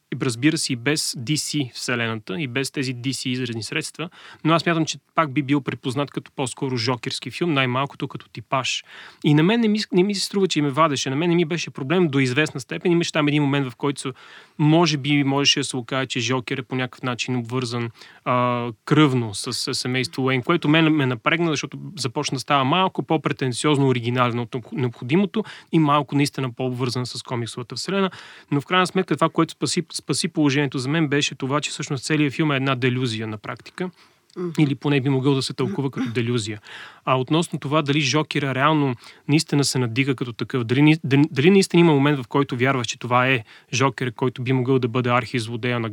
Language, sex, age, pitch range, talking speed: Bulgarian, male, 30-49, 130-155 Hz, 205 wpm